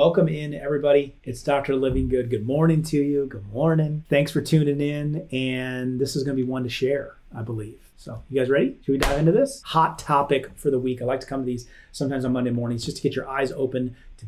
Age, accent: 30-49, American